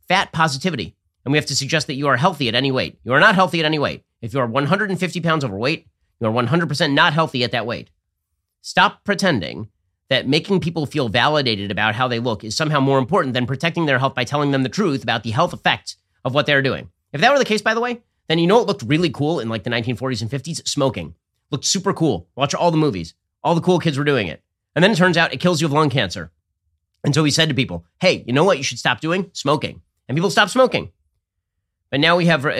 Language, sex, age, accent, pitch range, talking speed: English, male, 30-49, American, 115-160 Hz, 250 wpm